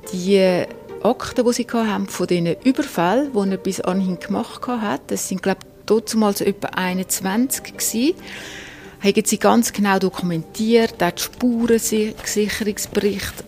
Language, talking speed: German, 135 wpm